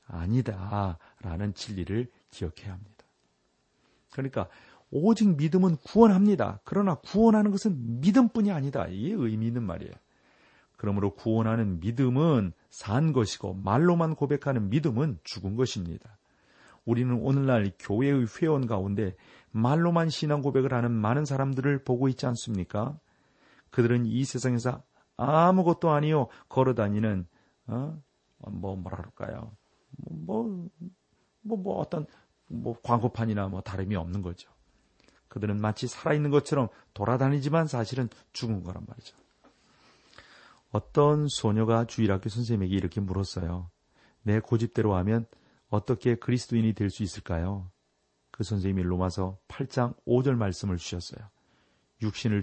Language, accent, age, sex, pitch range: Korean, native, 40-59, male, 100-135 Hz